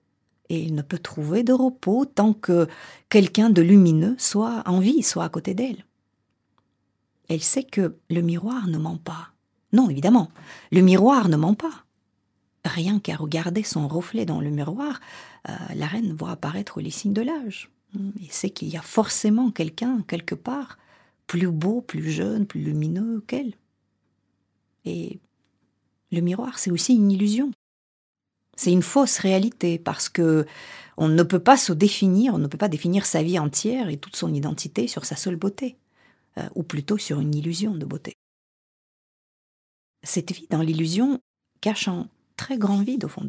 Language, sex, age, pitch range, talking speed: French, female, 40-59, 160-215 Hz, 165 wpm